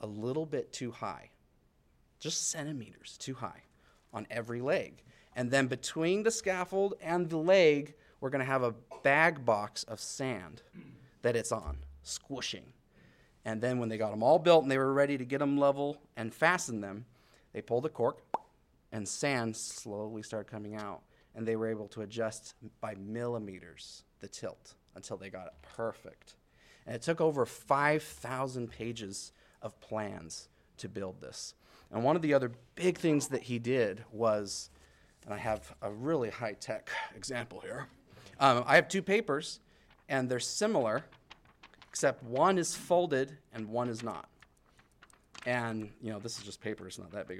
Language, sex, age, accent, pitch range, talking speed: English, male, 30-49, American, 105-140 Hz, 170 wpm